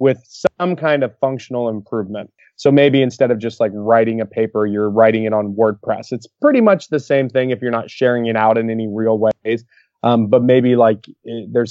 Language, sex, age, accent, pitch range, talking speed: English, male, 20-39, American, 110-130 Hz, 210 wpm